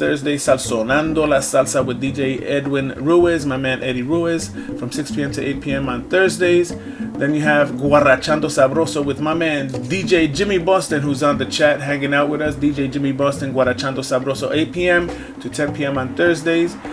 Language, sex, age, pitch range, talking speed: English, male, 30-49, 135-160 Hz, 165 wpm